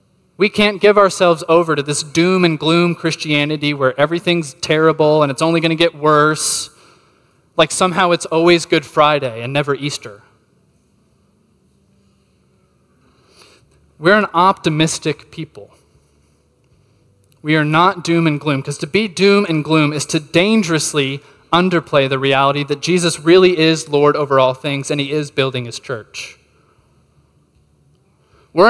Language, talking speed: English, 140 wpm